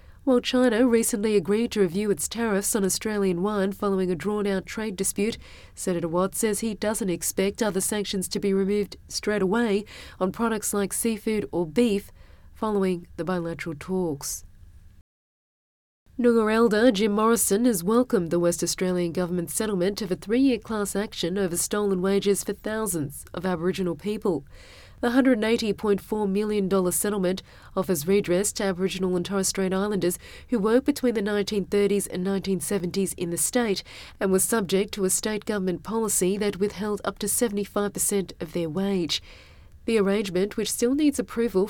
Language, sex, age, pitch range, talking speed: English, female, 30-49, 185-215 Hz, 155 wpm